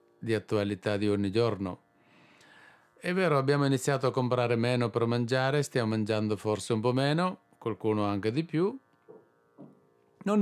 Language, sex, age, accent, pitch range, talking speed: Italian, male, 50-69, native, 110-155 Hz, 145 wpm